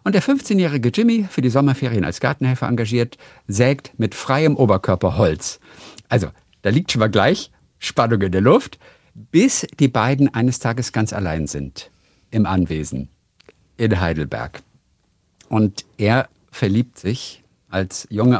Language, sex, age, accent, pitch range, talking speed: German, male, 50-69, German, 100-130 Hz, 140 wpm